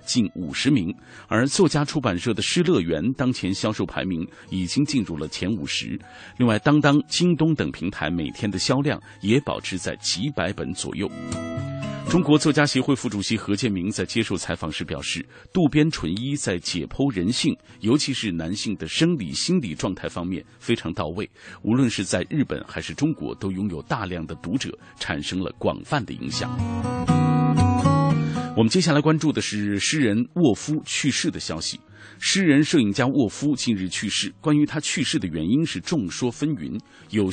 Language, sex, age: Chinese, male, 50-69